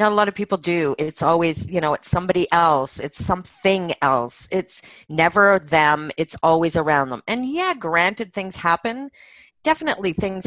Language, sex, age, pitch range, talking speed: English, female, 30-49, 165-220 Hz, 170 wpm